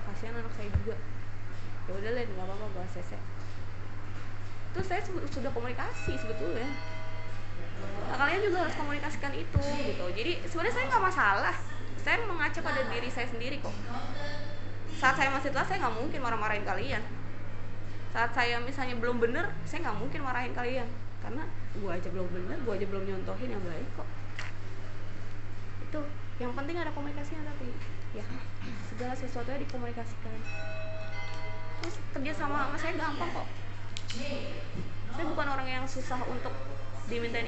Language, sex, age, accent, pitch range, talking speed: Indonesian, female, 20-39, native, 100-110 Hz, 140 wpm